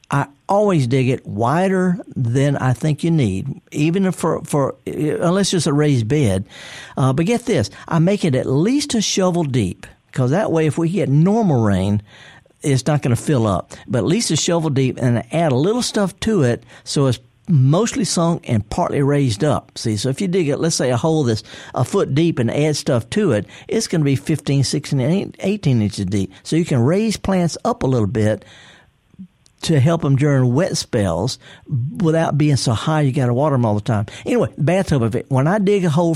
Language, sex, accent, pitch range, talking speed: English, male, American, 125-170 Hz, 215 wpm